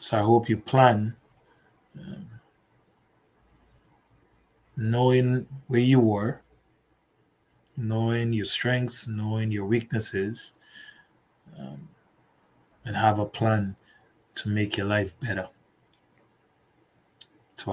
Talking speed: 90 wpm